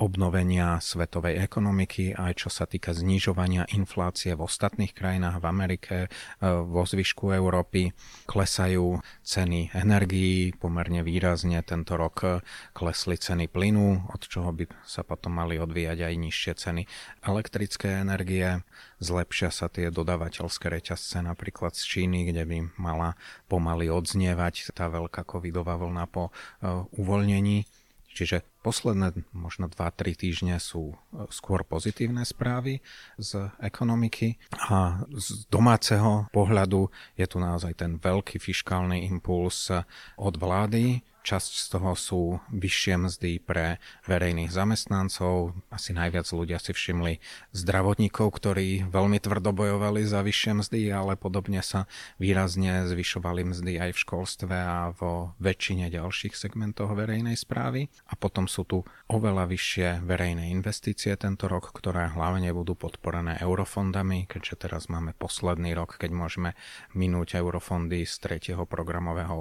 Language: Slovak